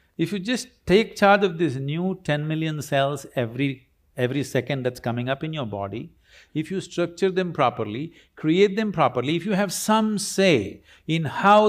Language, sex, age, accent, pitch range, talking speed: English, male, 60-79, Indian, 120-190 Hz, 180 wpm